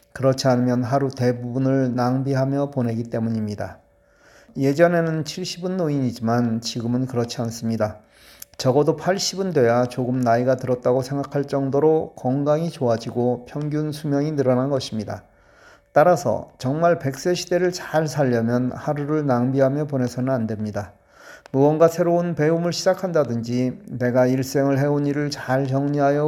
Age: 40-59